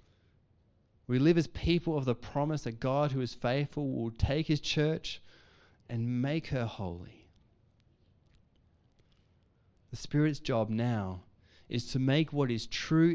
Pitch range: 100-145 Hz